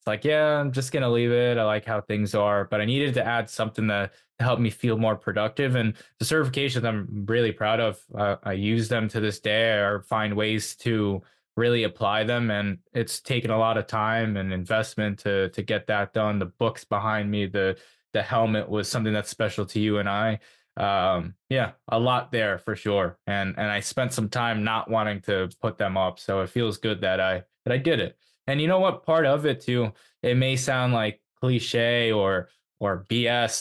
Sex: male